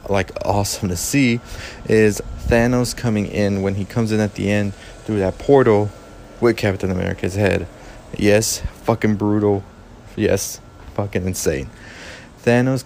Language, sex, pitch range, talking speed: English, male, 95-115 Hz, 135 wpm